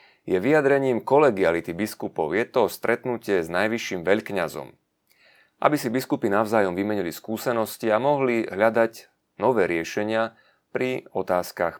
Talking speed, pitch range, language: 115 wpm, 90-110 Hz, Slovak